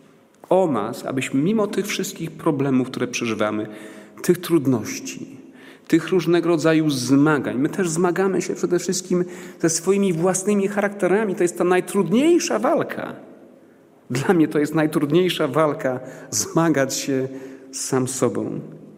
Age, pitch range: 40-59, 130-180 Hz